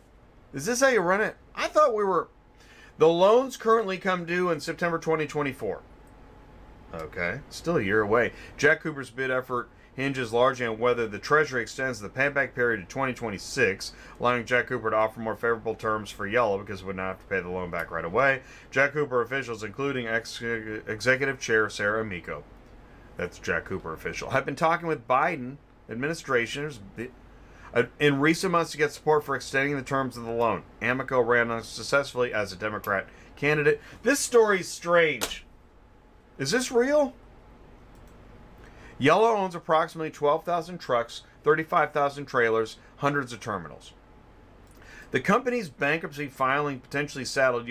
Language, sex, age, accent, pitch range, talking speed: English, male, 30-49, American, 110-155 Hz, 155 wpm